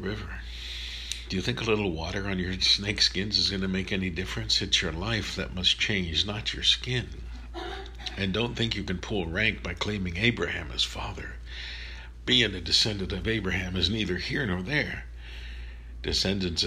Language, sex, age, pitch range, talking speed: English, male, 60-79, 65-95 Hz, 175 wpm